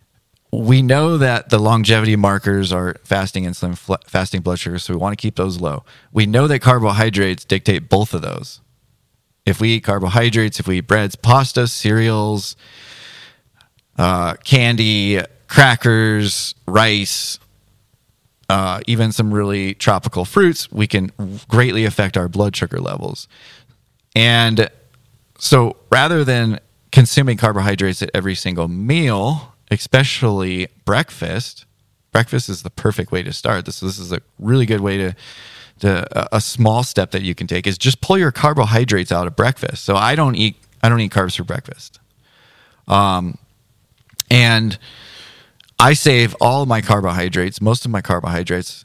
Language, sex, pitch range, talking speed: English, male, 95-120 Hz, 145 wpm